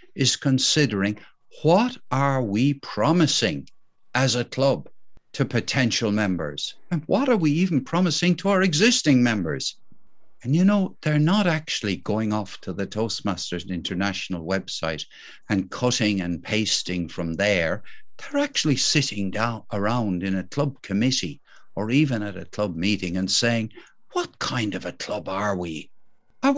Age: 60-79